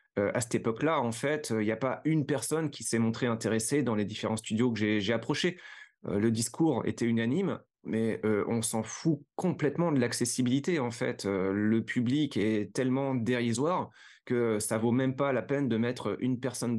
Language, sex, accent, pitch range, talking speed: French, male, French, 115-160 Hz, 205 wpm